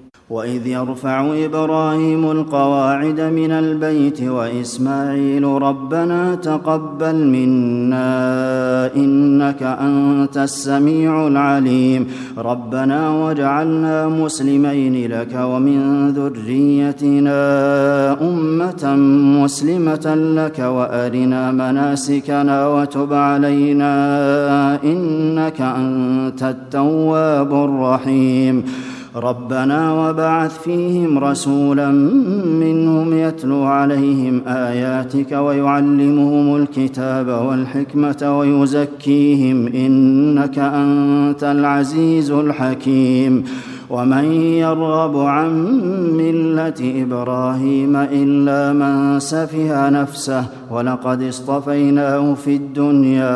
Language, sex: Arabic, male